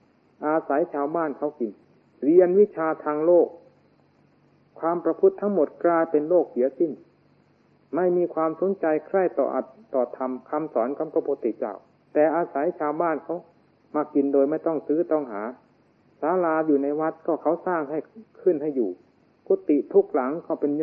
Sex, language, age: male, Thai, 60-79